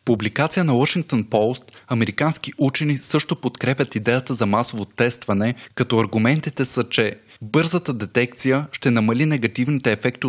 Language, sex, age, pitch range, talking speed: Bulgarian, male, 20-39, 115-140 Hz, 130 wpm